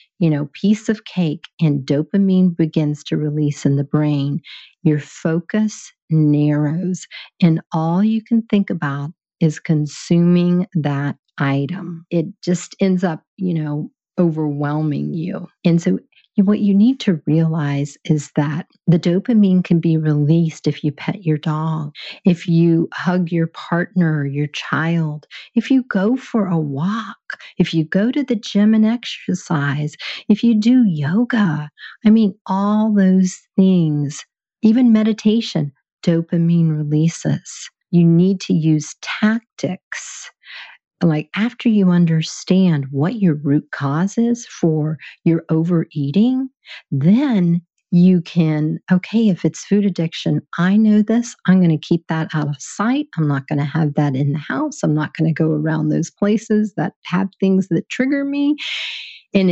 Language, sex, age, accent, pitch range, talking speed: English, female, 50-69, American, 155-200 Hz, 150 wpm